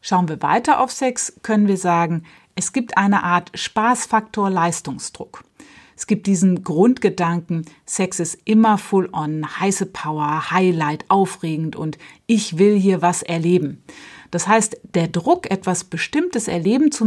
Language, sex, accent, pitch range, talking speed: German, female, German, 170-225 Hz, 140 wpm